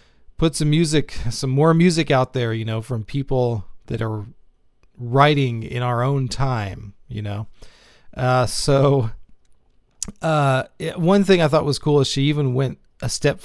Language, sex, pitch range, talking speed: English, male, 115-145 Hz, 160 wpm